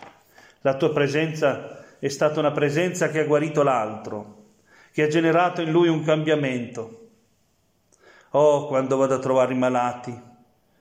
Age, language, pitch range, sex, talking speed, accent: 40-59, Italian, 130-155 Hz, male, 140 wpm, native